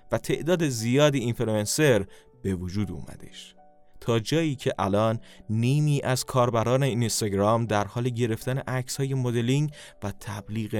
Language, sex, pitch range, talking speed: Persian, male, 110-140 Hz, 120 wpm